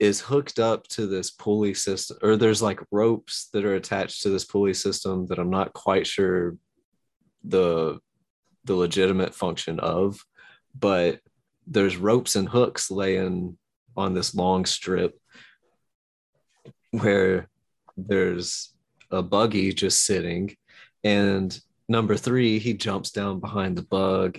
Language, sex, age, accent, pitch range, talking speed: English, male, 30-49, American, 95-110 Hz, 130 wpm